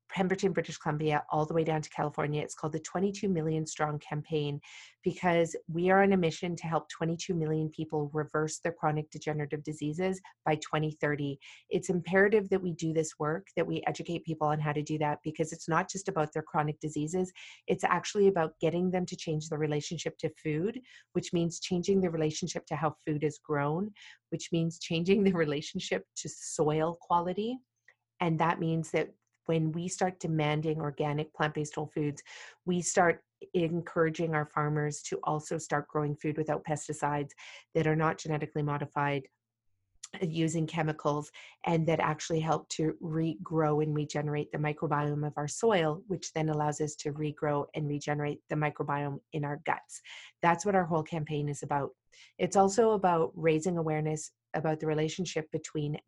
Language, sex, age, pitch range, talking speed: English, female, 40-59, 150-170 Hz, 170 wpm